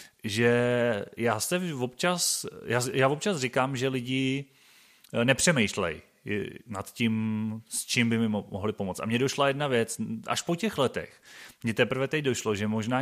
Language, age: Czech, 30-49